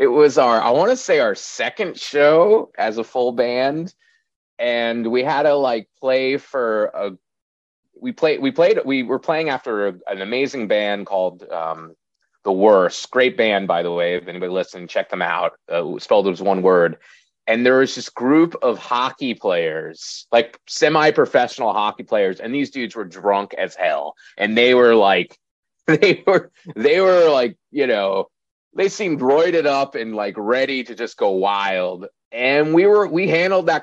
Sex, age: male, 30-49